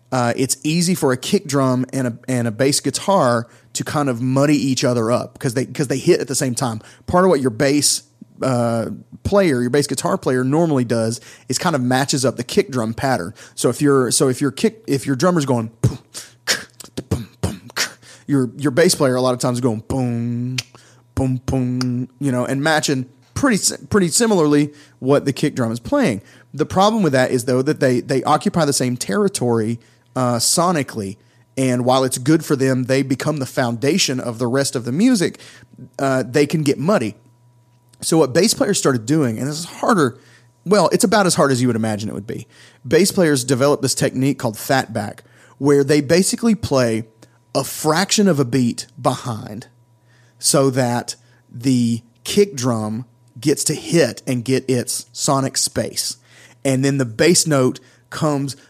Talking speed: 190 wpm